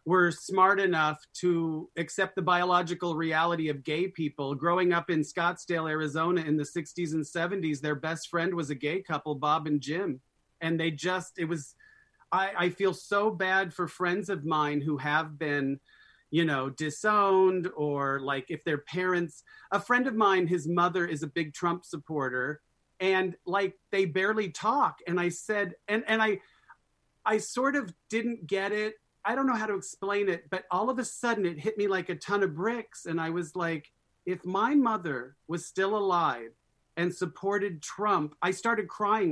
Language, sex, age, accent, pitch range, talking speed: English, male, 40-59, American, 160-215 Hz, 185 wpm